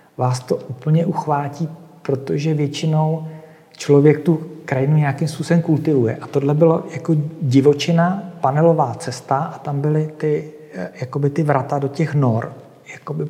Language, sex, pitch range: Czech, male, 135-155 Hz